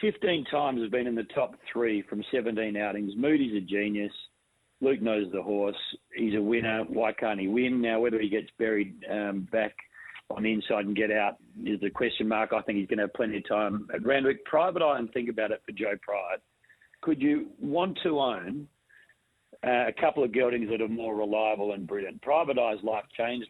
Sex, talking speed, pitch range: male, 210 wpm, 105-140 Hz